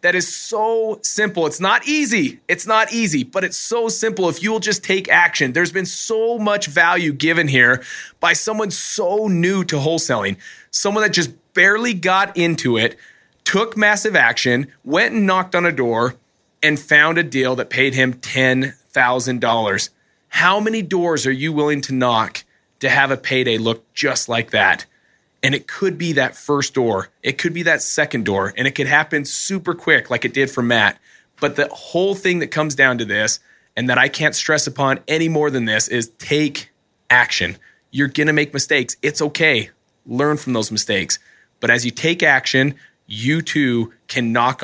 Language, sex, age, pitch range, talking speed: English, male, 30-49, 125-180 Hz, 185 wpm